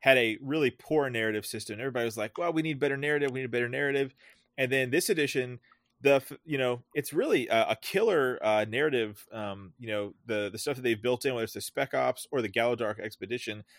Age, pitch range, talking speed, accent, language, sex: 30-49, 110-140 Hz, 220 wpm, American, English, male